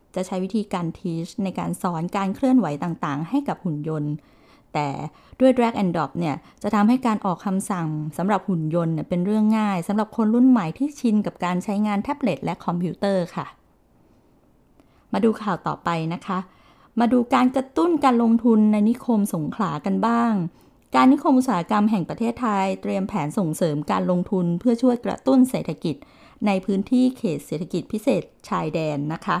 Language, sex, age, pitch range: English, female, 20-39, 180-235 Hz